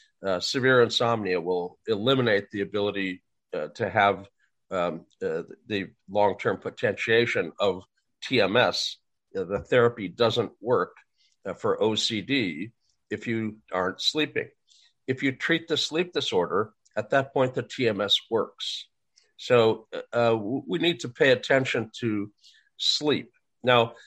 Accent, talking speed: American, 130 wpm